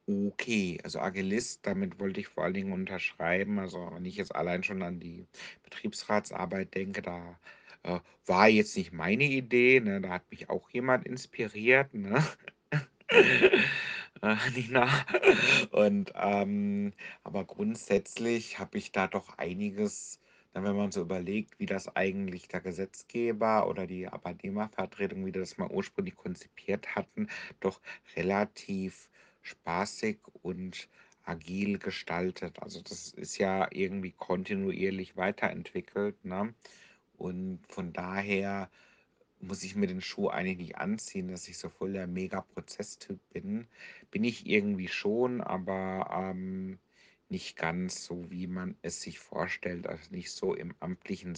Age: 60-79